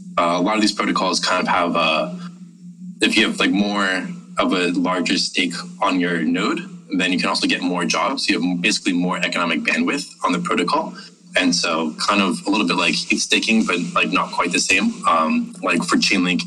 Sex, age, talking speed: male, 20-39, 210 wpm